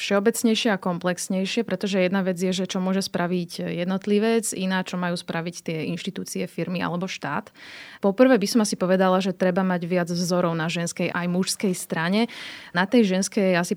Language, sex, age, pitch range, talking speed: Slovak, female, 20-39, 175-195 Hz, 175 wpm